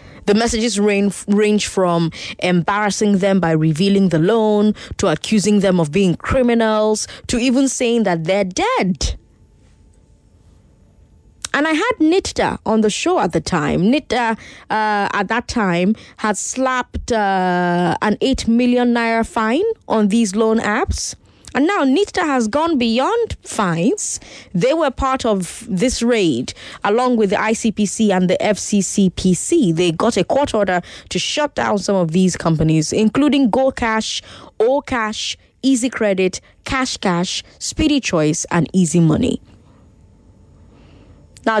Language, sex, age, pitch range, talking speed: English, female, 20-39, 175-230 Hz, 140 wpm